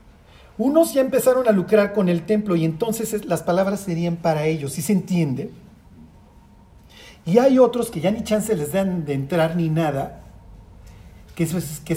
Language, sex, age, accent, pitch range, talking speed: Spanish, male, 40-59, Mexican, 155-210 Hz, 165 wpm